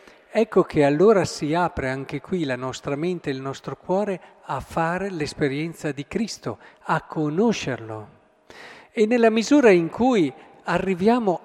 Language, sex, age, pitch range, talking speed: Italian, male, 50-69, 135-200 Hz, 140 wpm